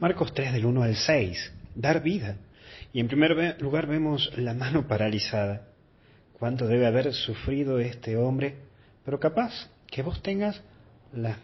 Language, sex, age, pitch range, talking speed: Spanish, male, 40-59, 105-135 Hz, 145 wpm